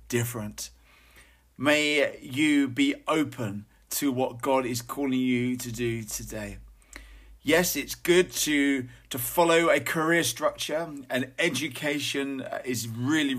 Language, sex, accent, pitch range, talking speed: English, male, British, 115-140 Hz, 120 wpm